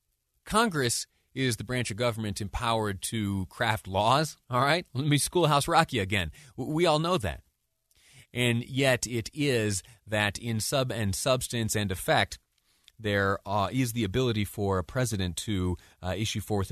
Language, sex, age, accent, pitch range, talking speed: English, male, 30-49, American, 90-120 Hz, 160 wpm